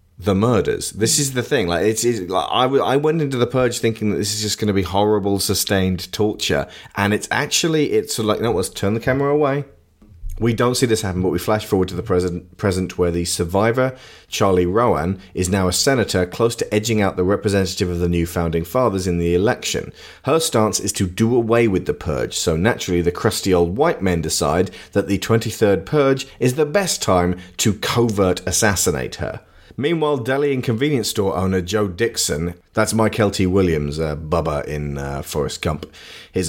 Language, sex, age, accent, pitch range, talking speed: English, male, 30-49, British, 90-115 Hz, 200 wpm